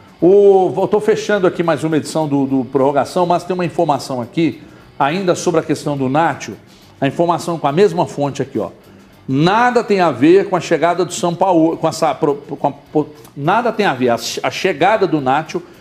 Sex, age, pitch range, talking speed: male, 60-79, 145-200 Hz, 210 wpm